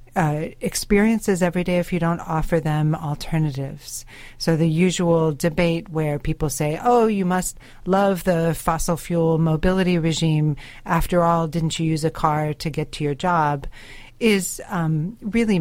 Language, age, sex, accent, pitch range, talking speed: English, 40-59, female, American, 150-180 Hz, 160 wpm